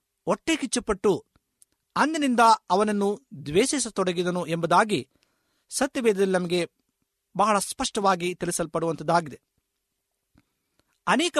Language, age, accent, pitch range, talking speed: Kannada, 50-69, native, 205-265 Hz, 65 wpm